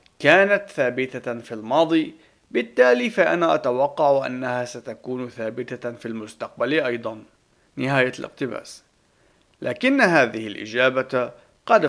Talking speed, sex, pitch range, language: 95 wpm, male, 120-150 Hz, Arabic